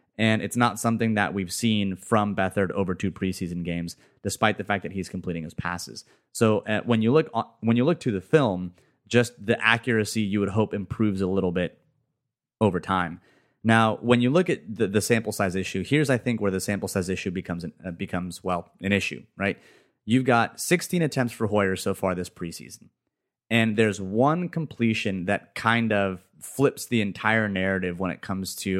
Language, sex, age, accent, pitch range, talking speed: English, male, 30-49, American, 95-115 Hz, 195 wpm